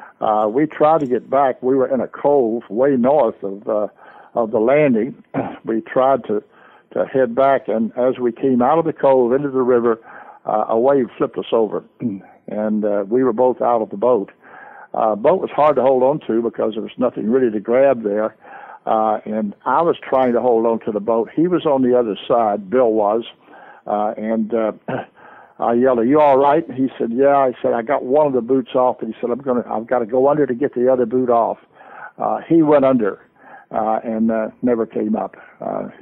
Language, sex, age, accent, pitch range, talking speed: English, male, 60-79, American, 115-135 Hz, 220 wpm